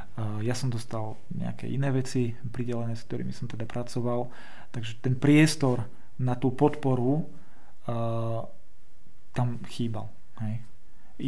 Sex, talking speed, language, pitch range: male, 115 wpm, Slovak, 115-130 Hz